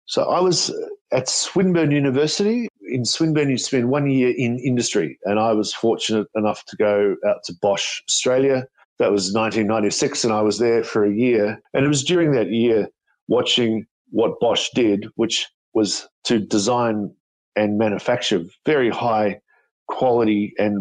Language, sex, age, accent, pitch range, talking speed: English, male, 50-69, Australian, 105-125 Hz, 160 wpm